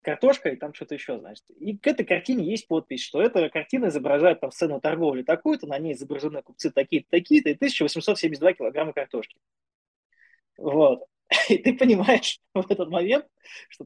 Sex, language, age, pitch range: male, Russian, 20-39, 150-225 Hz